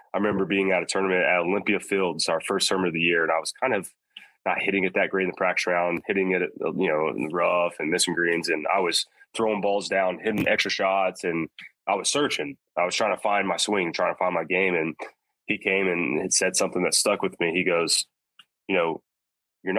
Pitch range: 85-105 Hz